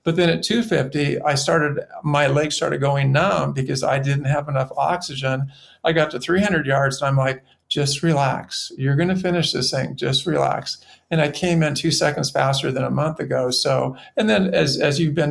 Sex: male